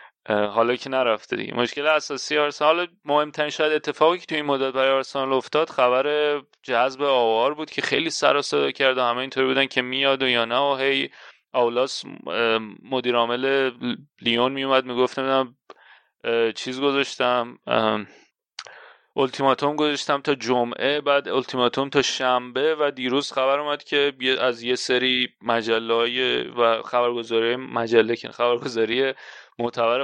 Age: 30-49